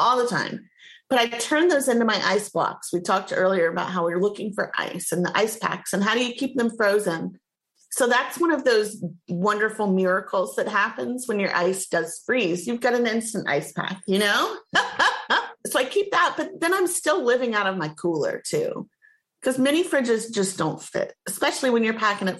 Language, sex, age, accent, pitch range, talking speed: English, female, 30-49, American, 185-250 Hz, 210 wpm